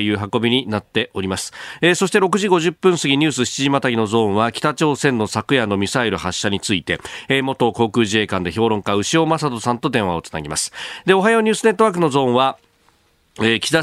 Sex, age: male, 40-59